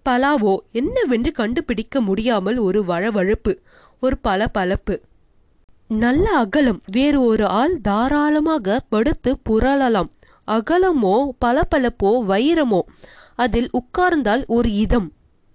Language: Tamil